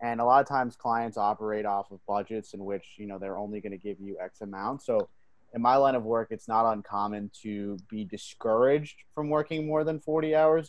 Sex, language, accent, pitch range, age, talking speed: male, English, American, 105-125 Hz, 20-39, 225 wpm